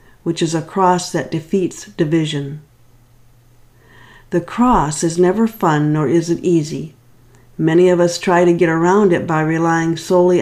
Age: 50-69